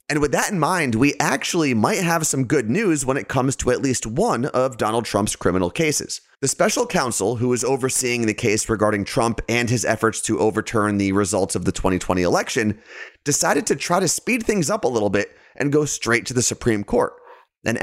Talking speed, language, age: 210 wpm, English, 30-49